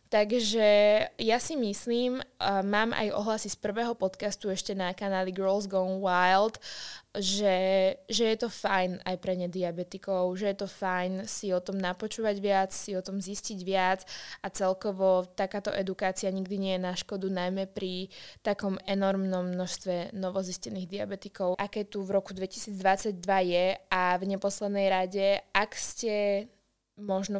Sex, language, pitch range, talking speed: female, Slovak, 190-210 Hz, 150 wpm